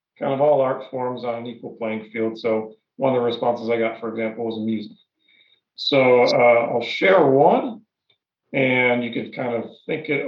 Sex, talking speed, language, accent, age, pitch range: male, 195 wpm, English, American, 40-59, 115-145 Hz